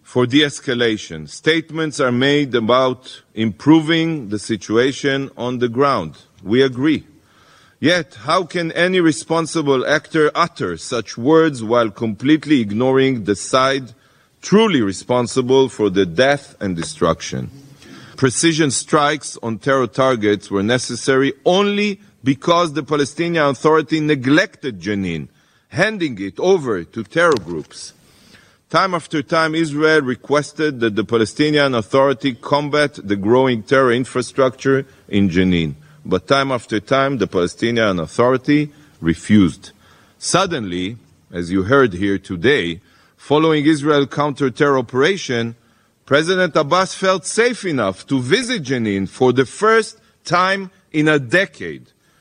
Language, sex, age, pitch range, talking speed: English, male, 40-59, 115-155 Hz, 120 wpm